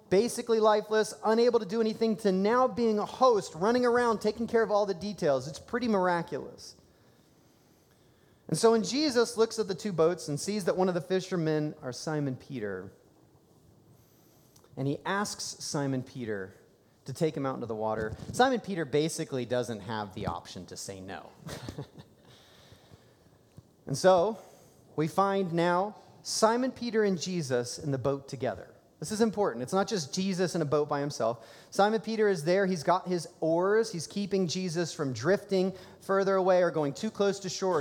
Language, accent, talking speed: English, American, 175 wpm